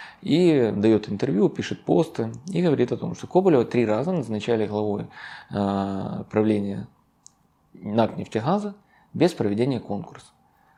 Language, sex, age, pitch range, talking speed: Ukrainian, male, 20-39, 105-130 Hz, 125 wpm